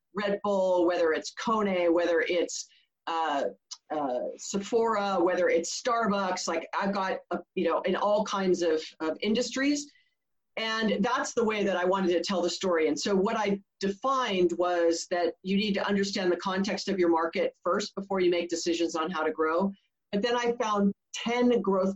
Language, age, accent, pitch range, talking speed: English, 40-59, American, 175-215 Hz, 185 wpm